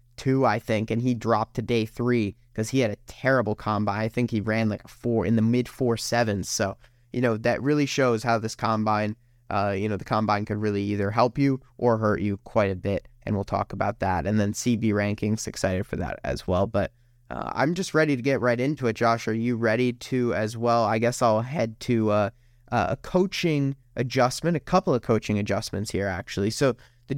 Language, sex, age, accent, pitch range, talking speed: English, male, 20-39, American, 110-135 Hz, 220 wpm